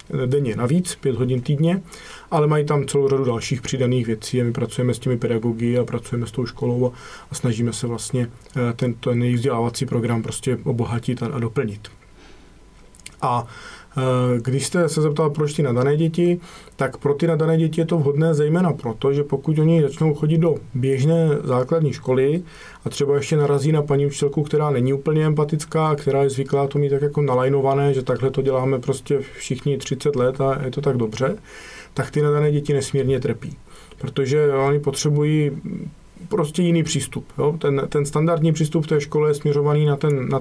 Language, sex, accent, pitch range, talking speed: English, male, Czech, 130-150 Hz, 180 wpm